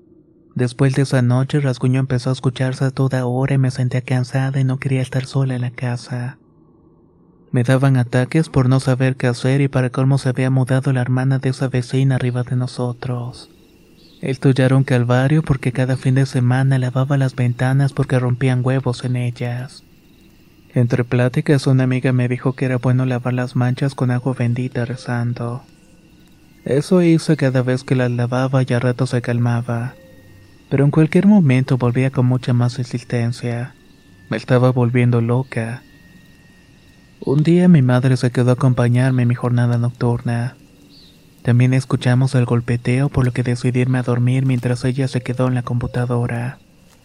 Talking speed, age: 170 wpm, 30-49